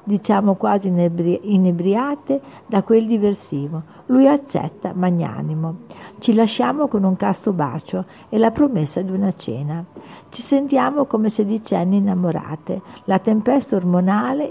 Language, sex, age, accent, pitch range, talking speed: Italian, female, 50-69, native, 170-225 Hz, 120 wpm